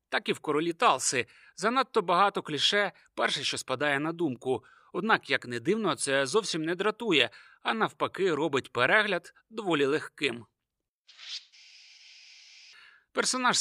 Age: 30-49